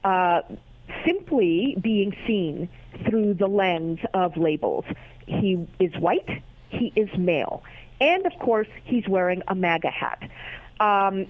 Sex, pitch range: female, 195-270 Hz